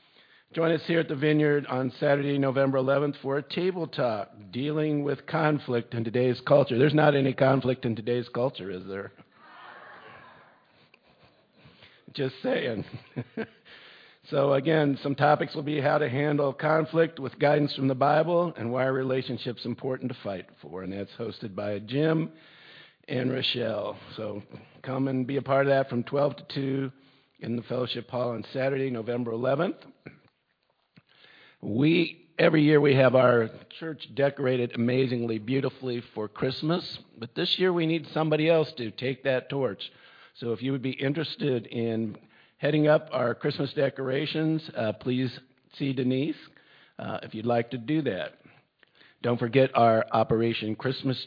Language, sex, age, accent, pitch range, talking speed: English, male, 50-69, American, 120-145 Hz, 155 wpm